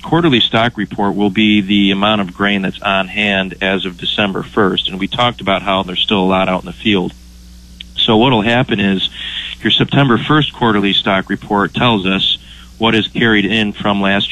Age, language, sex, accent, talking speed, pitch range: 30-49, English, male, American, 200 wpm, 95-105 Hz